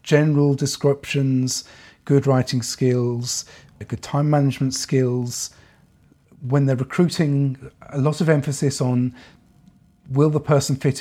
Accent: British